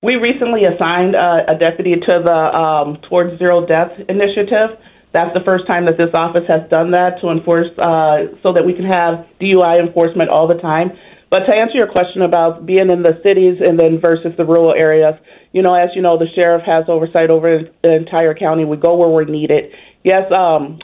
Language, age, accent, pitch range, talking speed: English, 40-59, American, 160-180 Hz, 210 wpm